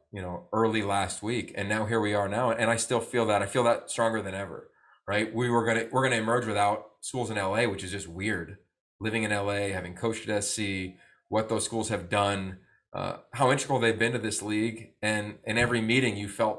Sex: male